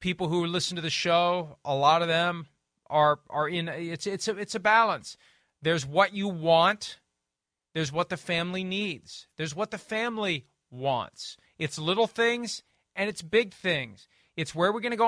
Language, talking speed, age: English, 185 wpm, 40-59